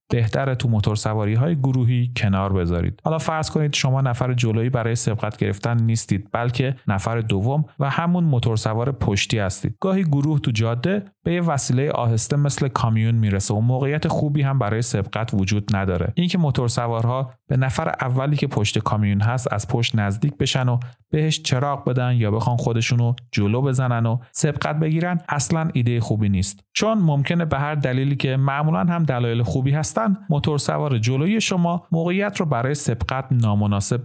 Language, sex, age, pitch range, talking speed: Persian, male, 40-59, 115-145 Hz, 165 wpm